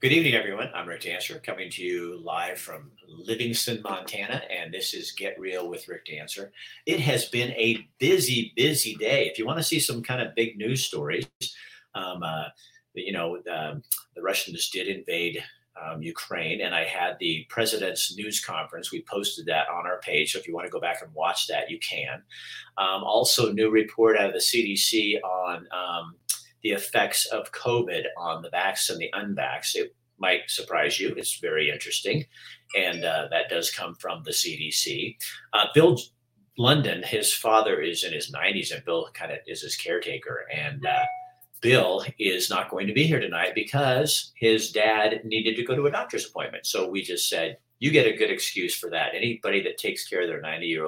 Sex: male